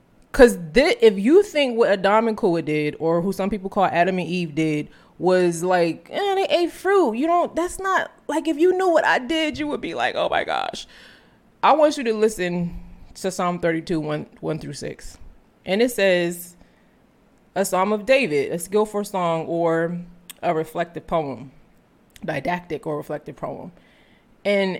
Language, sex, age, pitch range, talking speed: English, female, 20-39, 175-240 Hz, 180 wpm